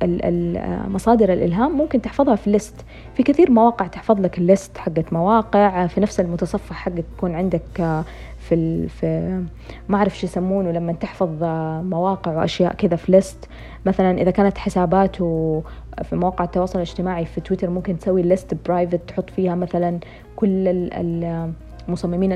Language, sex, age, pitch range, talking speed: Arabic, female, 20-39, 170-200 Hz, 135 wpm